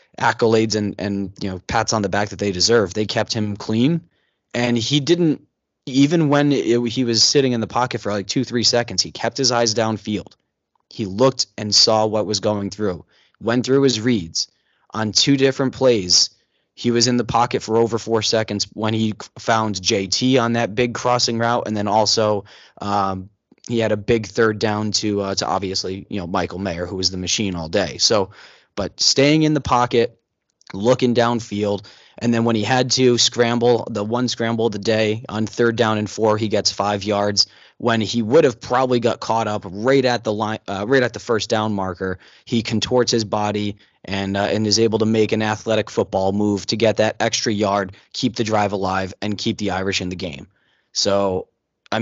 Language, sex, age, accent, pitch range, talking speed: English, male, 20-39, American, 100-120 Hz, 205 wpm